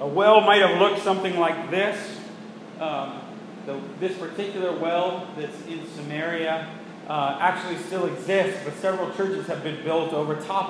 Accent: American